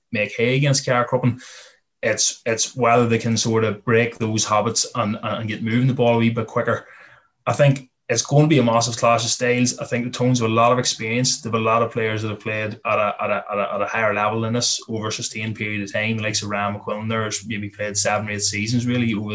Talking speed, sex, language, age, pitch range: 250 wpm, male, English, 20-39, 110-120 Hz